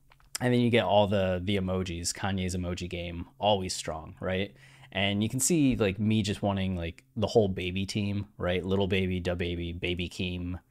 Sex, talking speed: male, 190 wpm